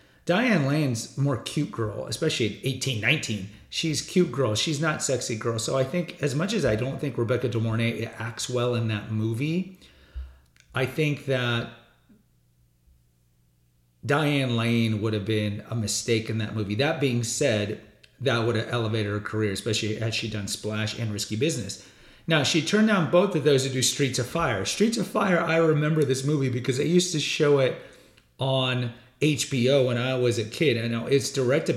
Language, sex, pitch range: English, male, 110-145 Hz